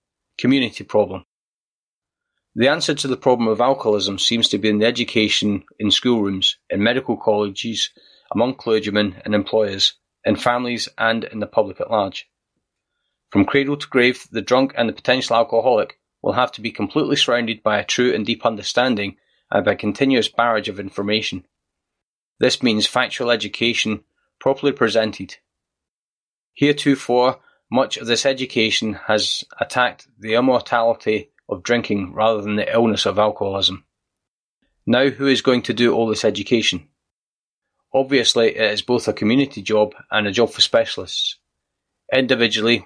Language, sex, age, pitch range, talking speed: English, male, 30-49, 105-125 Hz, 150 wpm